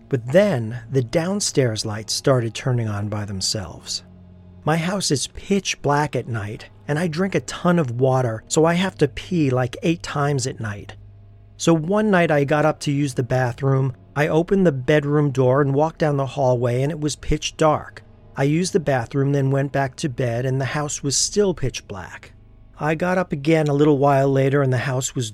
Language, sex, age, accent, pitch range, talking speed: English, male, 40-59, American, 120-155 Hz, 205 wpm